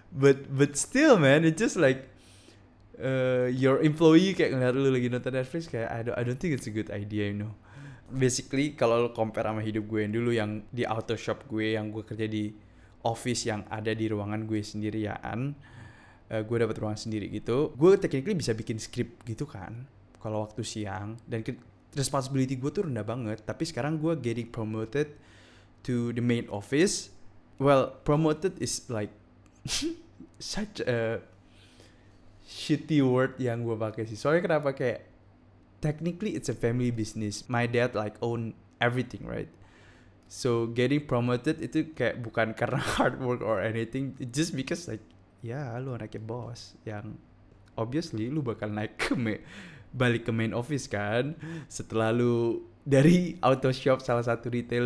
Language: Indonesian